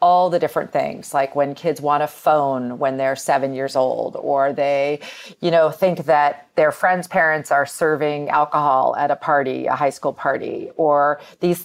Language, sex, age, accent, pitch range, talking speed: English, female, 40-59, American, 145-175 Hz, 185 wpm